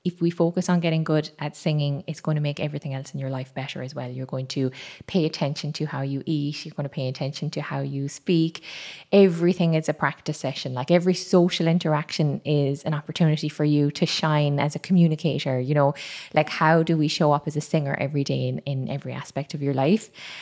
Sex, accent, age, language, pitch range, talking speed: female, Irish, 20-39, English, 150-180 Hz, 225 wpm